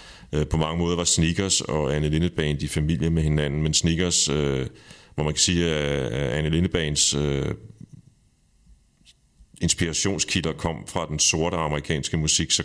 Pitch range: 75-85 Hz